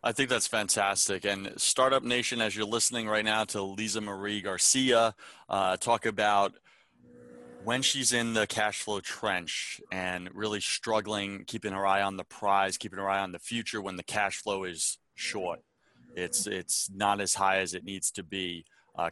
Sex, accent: male, American